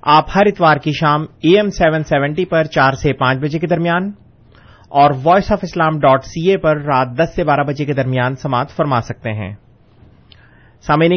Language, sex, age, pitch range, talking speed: Urdu, male, 30-49, 135-175 Hz, 185 wpm